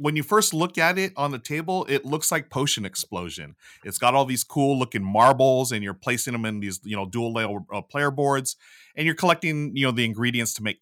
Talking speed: 240 wpm